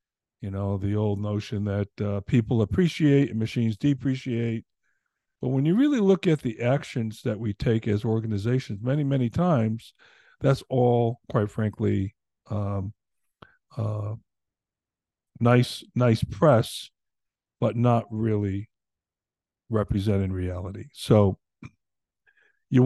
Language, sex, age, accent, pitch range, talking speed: English, male, 50-69, American, 105-135 Hz, 115 wpm